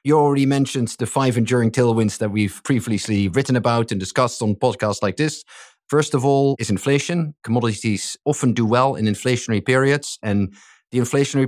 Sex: male